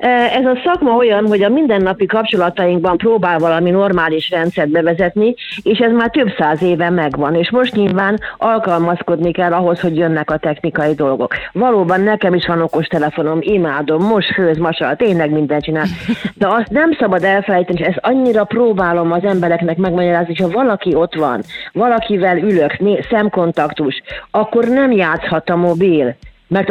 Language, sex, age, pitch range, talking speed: Hungarian, female, 40-59, 165-210 Hz, 155 wpm